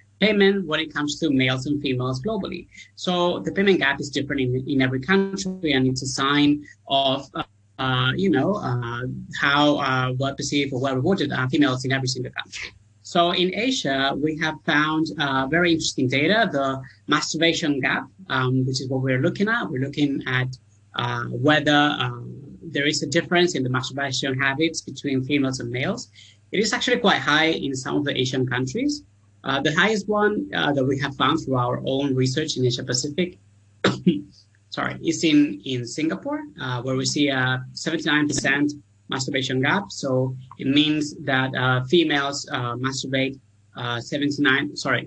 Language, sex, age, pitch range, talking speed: English, male, 30-49, 130-155 Hz, 170 wpm